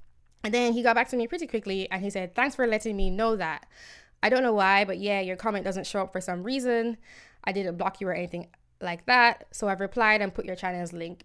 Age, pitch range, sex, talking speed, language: 10-29, 175-215 Hz, female, 255 wpm, English